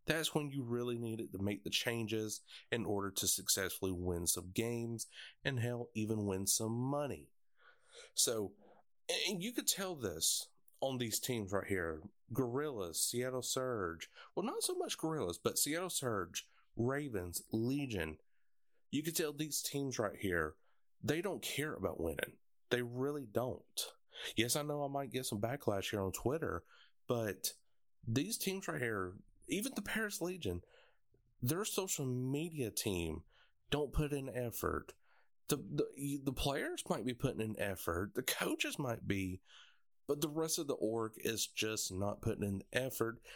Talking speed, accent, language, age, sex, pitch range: 160 wpm, American, English, 30-49, male, 100-145 Hz